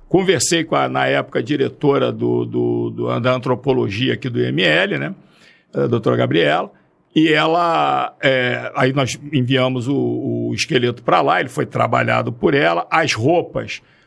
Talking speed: 160 wpm